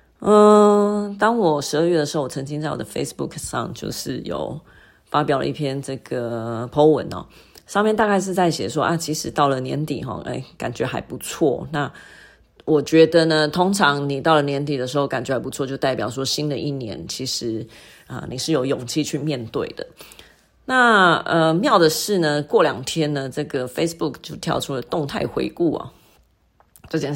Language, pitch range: Chinese, 135-165 Hz